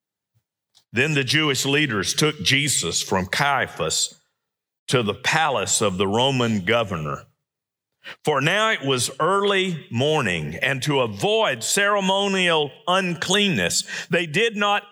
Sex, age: male, 50-69